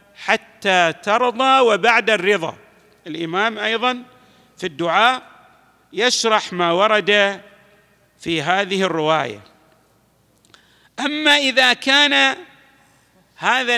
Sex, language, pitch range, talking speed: male, Arabic, 180-255 Hz, 80 wpm